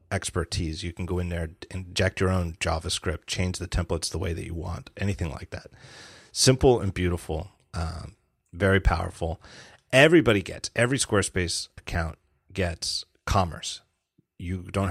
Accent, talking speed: American, 145 wpm